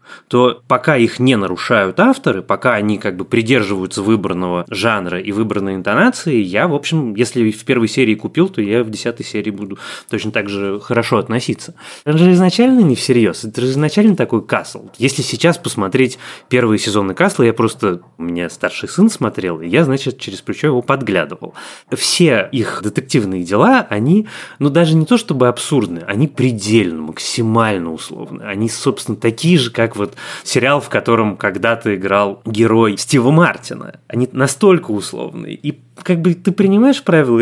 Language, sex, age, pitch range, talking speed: Russian, male, 20-39, 105-140 Hz, 165 wpm